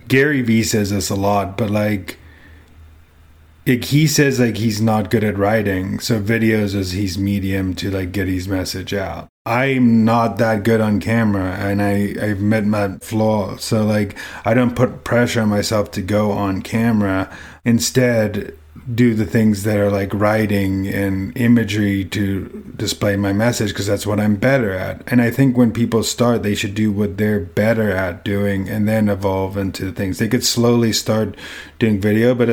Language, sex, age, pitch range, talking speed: English, male, 30-49, 100-120 Hz, 180 wpm